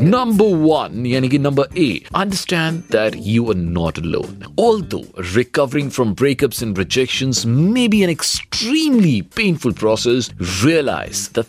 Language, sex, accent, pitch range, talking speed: Hindi, male, native, 110-150 Hz, 130 wpm